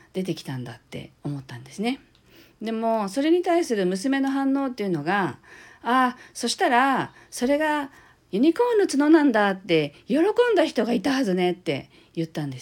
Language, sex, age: Japanese, female, 50-69